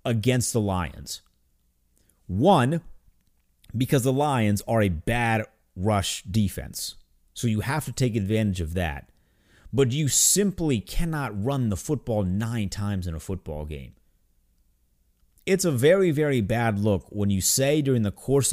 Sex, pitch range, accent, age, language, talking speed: male, 90-125 Hz, American, 30-49, English, 145 wpm